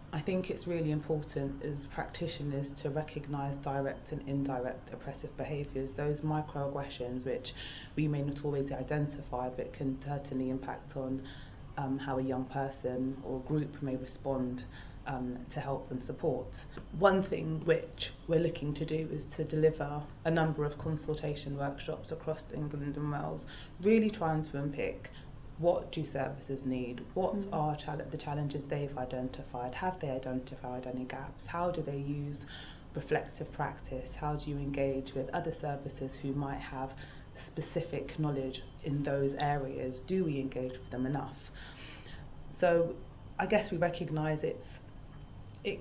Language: English